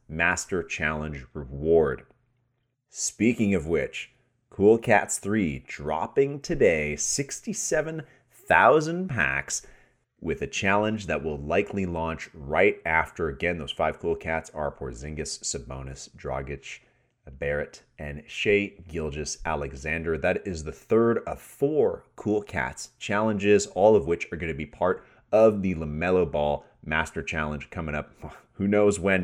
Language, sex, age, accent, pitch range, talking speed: English, male, 30-49, American, 80-110 Hz, 130 wpm